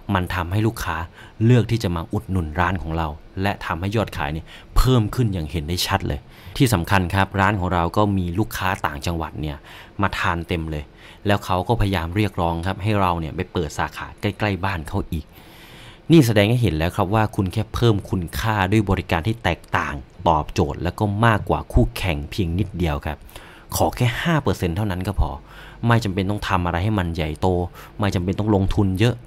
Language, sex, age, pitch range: English, male, 30-49, 90-110 Hz